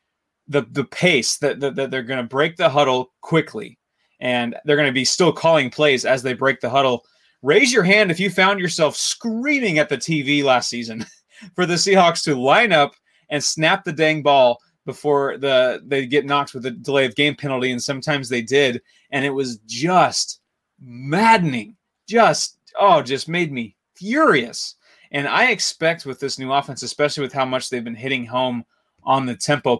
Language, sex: English, male